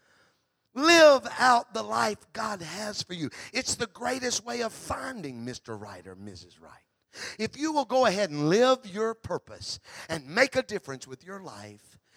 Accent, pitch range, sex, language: American, 125-200 Hz, male, English